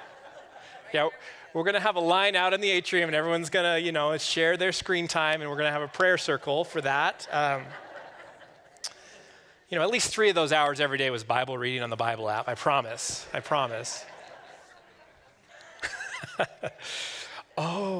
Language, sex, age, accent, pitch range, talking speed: English, male, 30-49, American, 145-190 Hz, 180 wpm